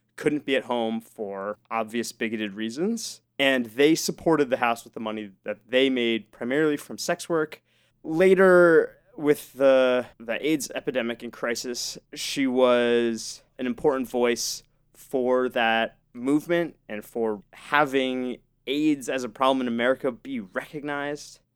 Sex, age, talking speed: male, 20-39, 140 wpm